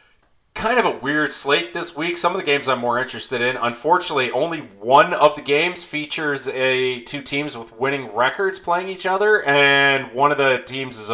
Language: English